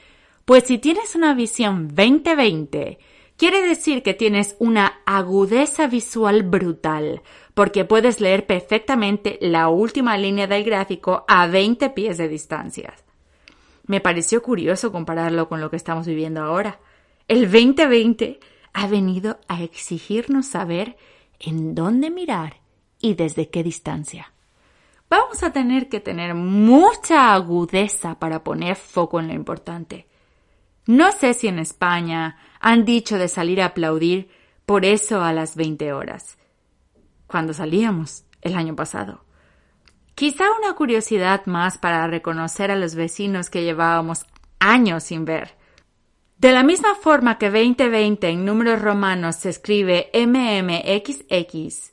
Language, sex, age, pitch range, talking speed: Spanish, female, 30-49, 165-230 Hz, 130 wpm